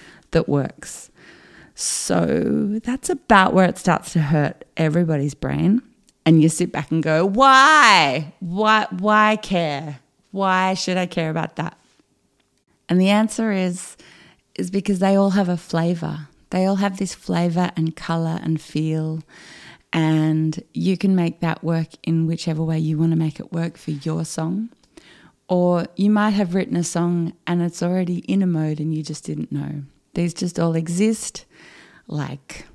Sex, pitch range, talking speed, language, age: female, 160-195 Hz, 165 wpm, English, 30-49